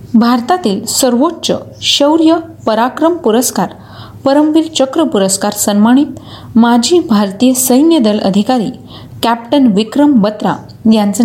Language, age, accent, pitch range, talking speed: Marathi, 30-49, native, 215-275 Hz, 95 wpm